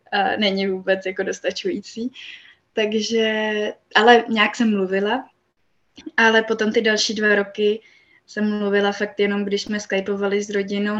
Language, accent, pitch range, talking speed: Czech, native, 200-230 Hz, 130 wpm